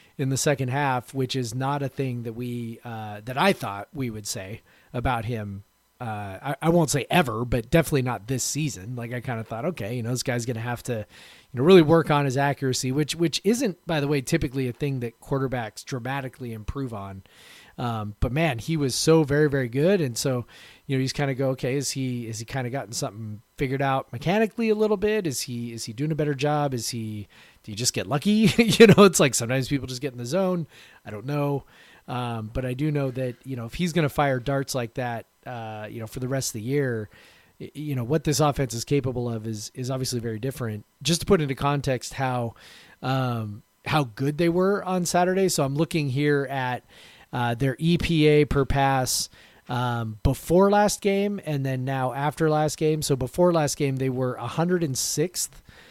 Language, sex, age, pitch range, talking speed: English, male, 30-49, 120-150 Hz, 220 wpm